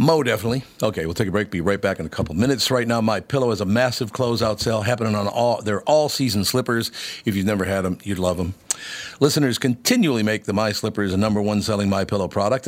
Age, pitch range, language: 50-69, 95-125 Hz, English